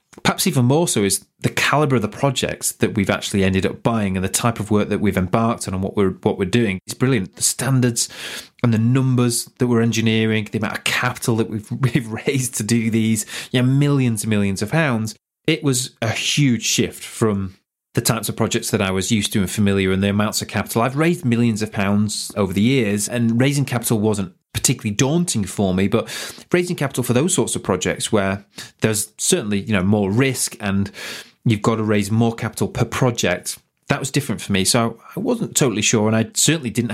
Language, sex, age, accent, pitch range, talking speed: English, male, 30-49, British, 100-120 Hz, 220 wpm